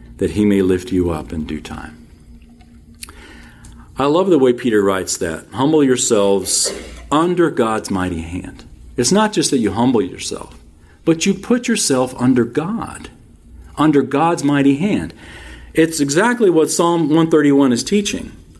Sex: male